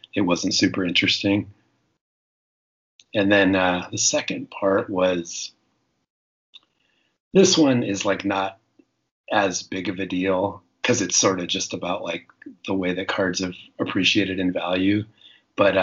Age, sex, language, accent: 30-49, male, English, American